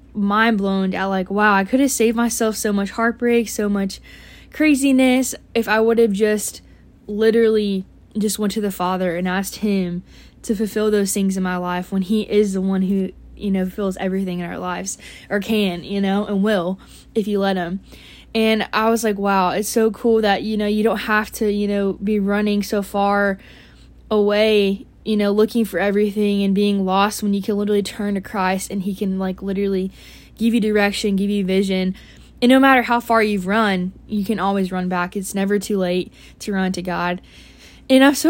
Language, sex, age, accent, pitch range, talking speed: English, female, 10-29, American, 195-220 Hz, 205 wpm